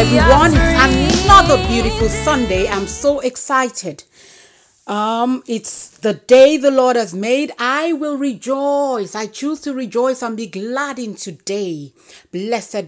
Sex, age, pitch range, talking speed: female, 40-59, 200-265 Hz, 135 wpm